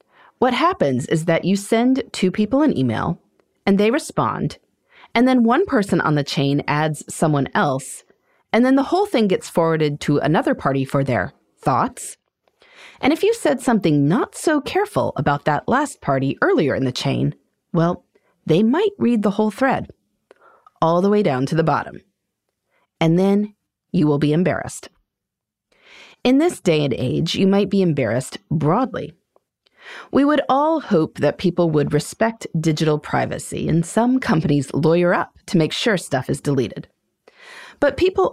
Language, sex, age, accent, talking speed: English, female, 30-49, American, 165 wpm